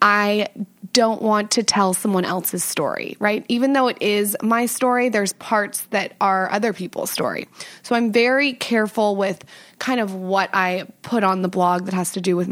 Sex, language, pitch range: female, English, 190-220 Hz